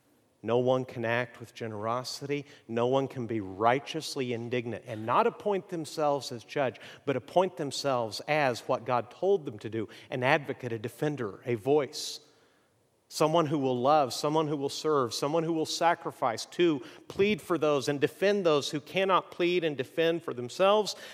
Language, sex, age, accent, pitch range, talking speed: English, male, 50-69, American, 135-185 Hz, 170 wpm